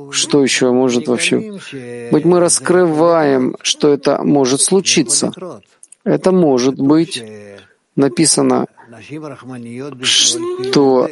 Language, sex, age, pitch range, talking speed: Russian, male, 50-69, 125-150 Hz, 85 wpm